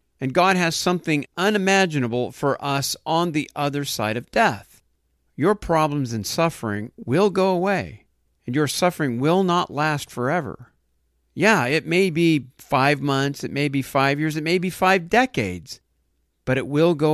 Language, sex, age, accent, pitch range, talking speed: English, male, 50-69, American, 115-155 Hz, 165 wpm